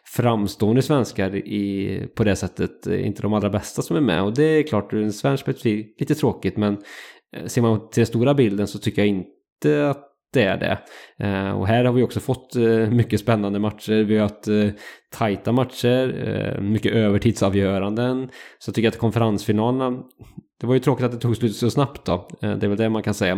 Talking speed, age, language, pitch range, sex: 215 wpm, 20-39, English, 100-125 Hz, male